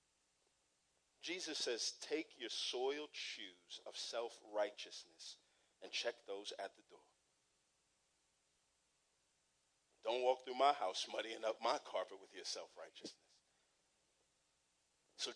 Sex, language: male, English